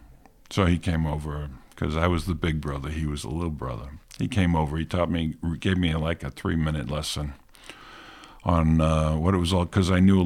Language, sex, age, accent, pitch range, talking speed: English, male, 50-69, American, 80-95 Hz, 215 wpm